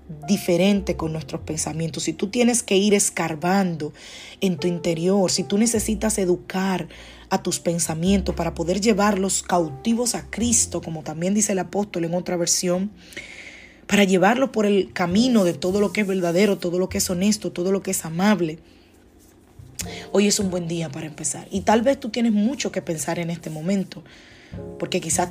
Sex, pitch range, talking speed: female, 170-205 Hz, 180 wpm